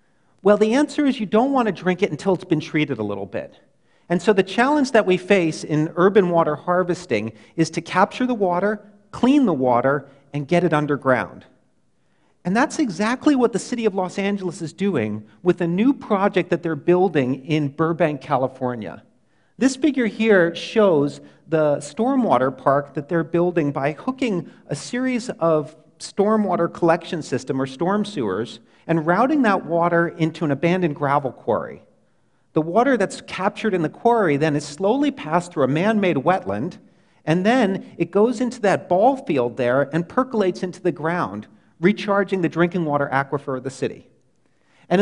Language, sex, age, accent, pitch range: Chinese, male, 40-59, American, 155-210 Hz